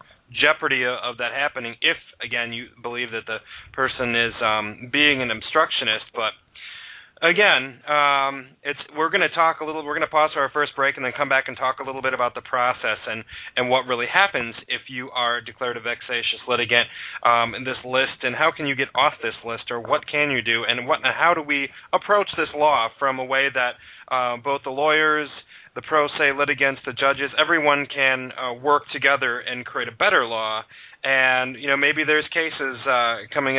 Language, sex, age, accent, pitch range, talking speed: English, male, 30-49, American, 125-145 Hz, 210 wpm